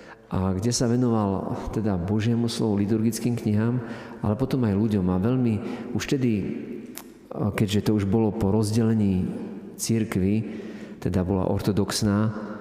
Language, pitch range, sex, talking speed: Slovak, 95-110 Hz, male, 130 wpm